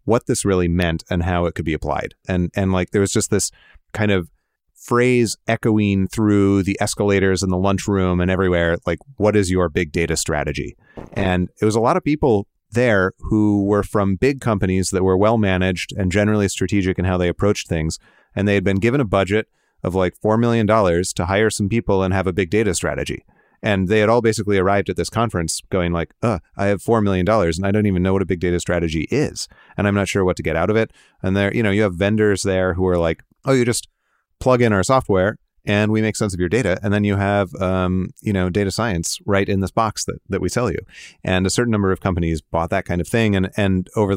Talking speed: 240 wpm